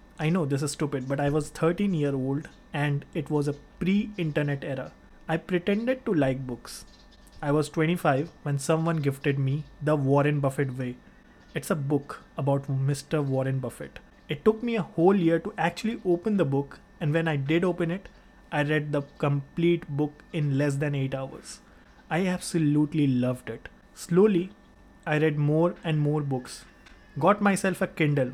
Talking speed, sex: 175 wpm, male